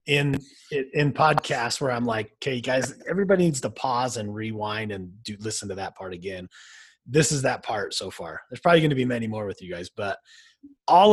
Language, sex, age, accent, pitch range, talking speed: English, male, 30-49, American, 110-165 Hz, 210 wpm